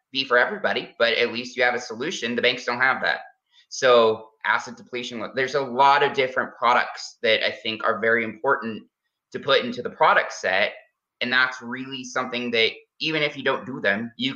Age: 20-39